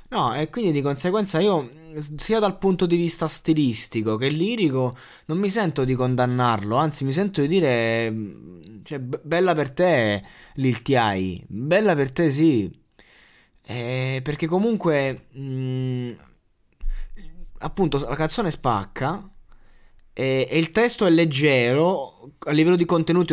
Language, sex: Italian, male